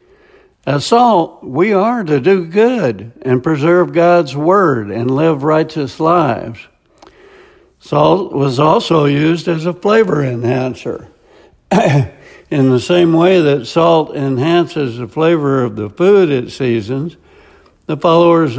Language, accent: English, American